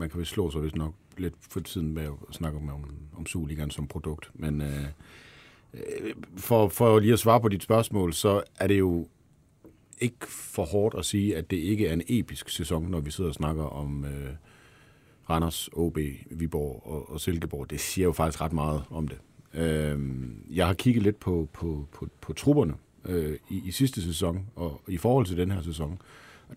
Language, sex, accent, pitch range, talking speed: Danish, male, native, 80-105 Hz, 200 wpm